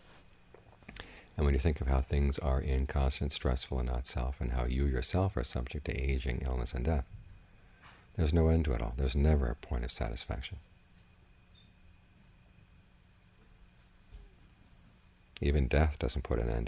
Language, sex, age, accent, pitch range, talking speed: English, male, 50-69, American, 65-85 Hz, 150 wpm